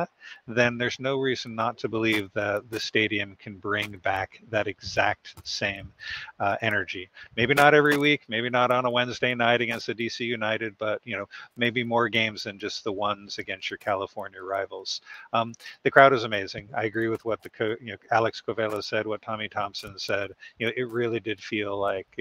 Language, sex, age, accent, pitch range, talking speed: English, male, 50-69, American, 105-125 Hz, 195 wpm